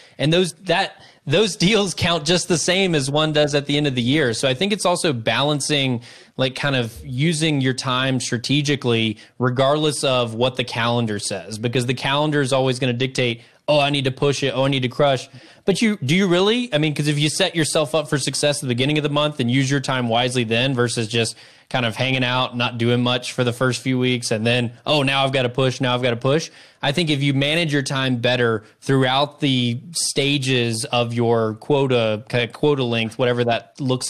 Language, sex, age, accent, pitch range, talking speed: English, male, 20-39, American, 120-145 Hz, 230 wpm